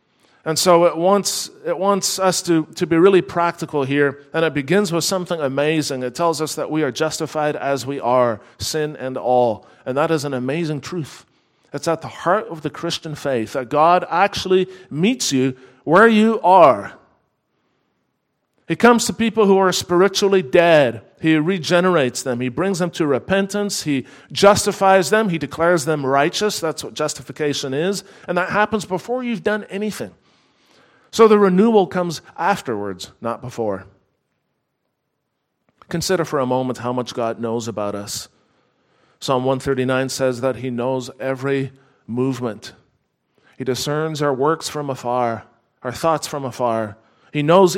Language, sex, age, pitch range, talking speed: English, male, 40-59, 130-185 Hz, 155 wpm